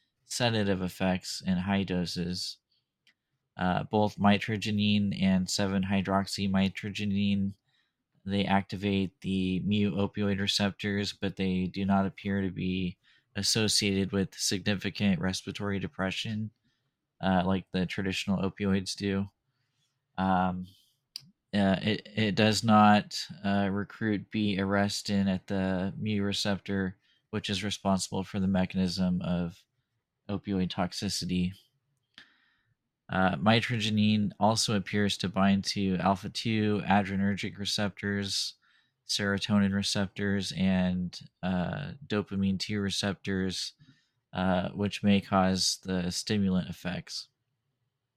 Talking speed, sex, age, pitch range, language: 105 wpm, male, 20-39, 95-105 Hz, English